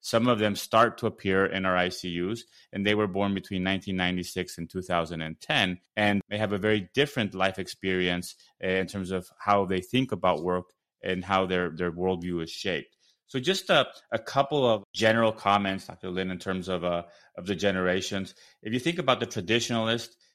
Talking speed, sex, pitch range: 185 wpm, male, 95-110 Hz